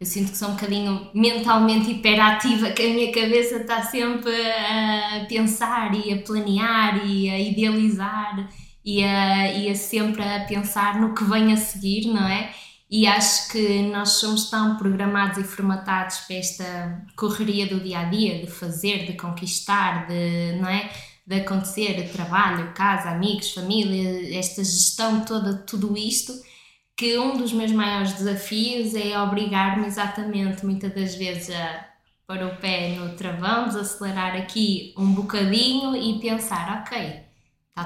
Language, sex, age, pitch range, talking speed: Portuguese, female, 20-39, 190-220 Hz, 145 wpm